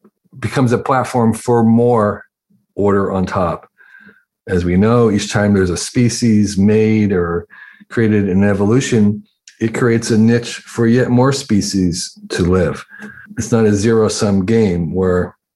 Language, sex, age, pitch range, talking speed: English, male, 50-69, 105-130 Hz, 145 wpm